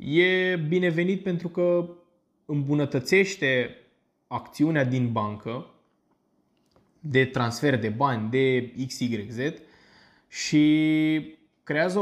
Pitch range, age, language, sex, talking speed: 120-170 Hz, 20-39, Romanian, male, 80 wpm